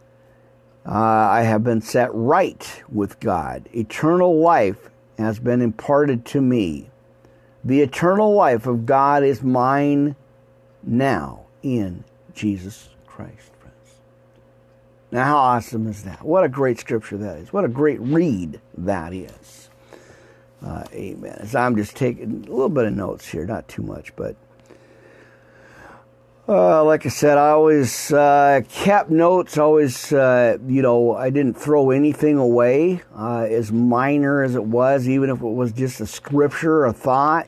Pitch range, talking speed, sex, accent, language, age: 110-145 Hz, 150 wpm, male, American, English, 50-69